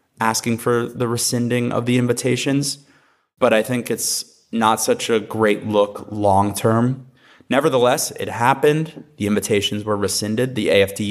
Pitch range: 100-120 Hz